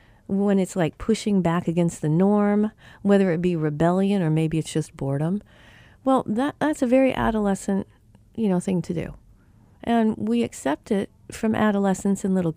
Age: 50-69